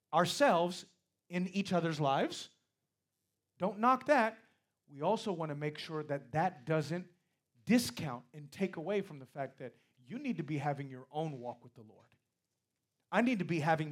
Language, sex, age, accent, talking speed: English, male, 30-49, American, 175 wpm